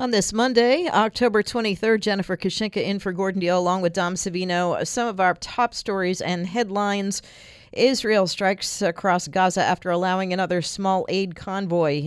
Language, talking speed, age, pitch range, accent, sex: English, 155 wpm, 50-69, 175-250 Hz, American, female